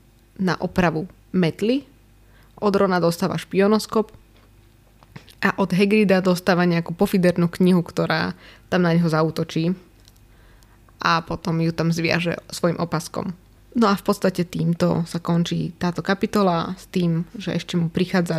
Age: 20-39